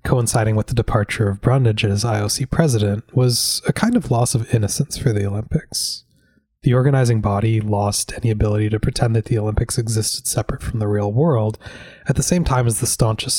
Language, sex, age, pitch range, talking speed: English, male, 20-39, 110-130 Hz, 195 wpm